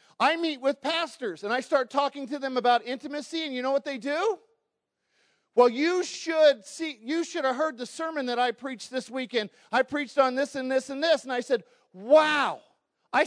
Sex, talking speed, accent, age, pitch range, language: male, 210 wpm, American, 40-59, 195-280 Hz, English